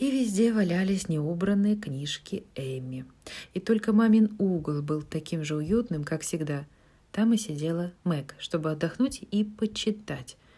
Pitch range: 160-215 Hz